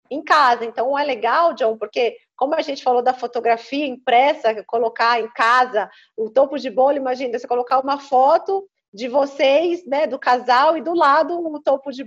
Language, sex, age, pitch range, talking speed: Portuguese, female, 40-59, 230-300 Hz, 190 wpm